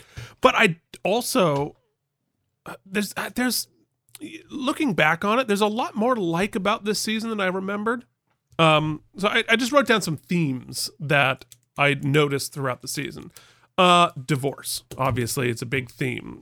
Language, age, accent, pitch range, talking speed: English, 30-49, American, 135-180 Hz, 155 wpm